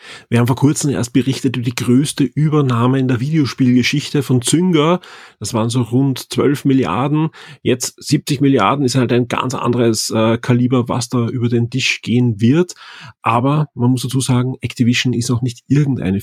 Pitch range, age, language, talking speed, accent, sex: 120-140 Hz, 30-49, German, 180 wpm, German, male